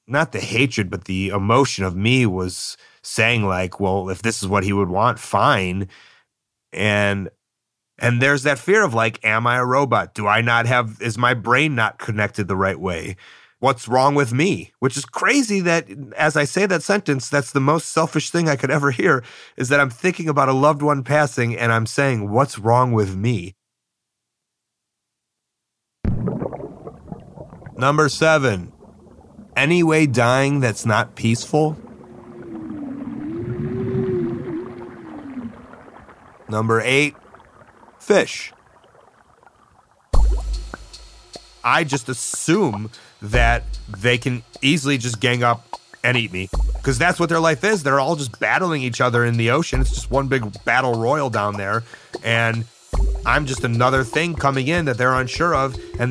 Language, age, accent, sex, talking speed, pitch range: English, 30-49, American, male, 150 wpm, 110-145 Hz